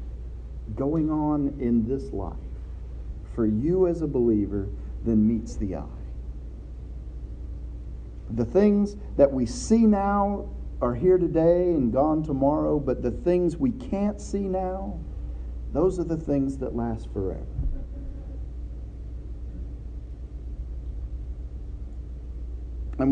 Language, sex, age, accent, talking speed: English, male, 40-59, American, 105 wpm